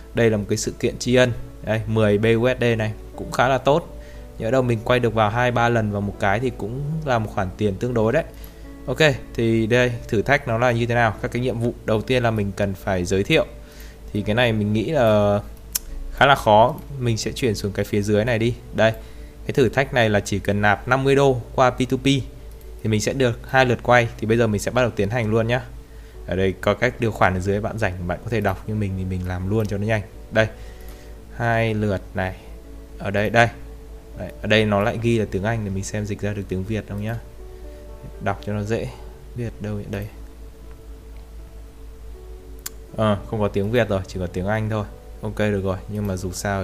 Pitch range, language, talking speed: 100-120 Hz, Vietnamese, 235 wpm